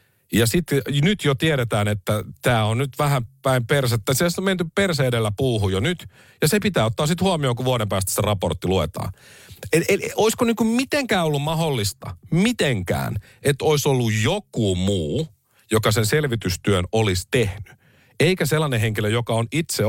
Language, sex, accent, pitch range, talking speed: Finnish, male, native, 105-150 Hz, 170 wpm